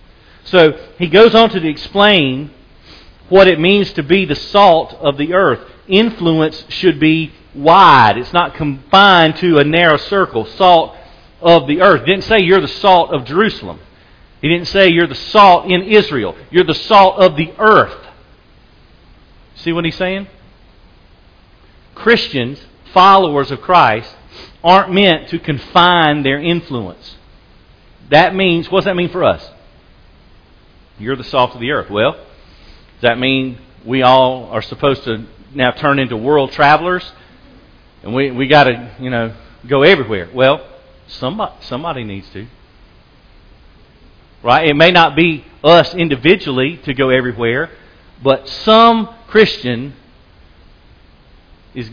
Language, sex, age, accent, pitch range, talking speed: English, male, 40-59, American, 120-175 Hz, 140 wpm